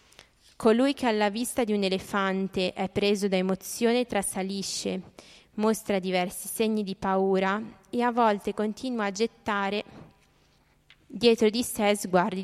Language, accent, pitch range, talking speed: Italian, native, 190-230 Hz, 130 wpm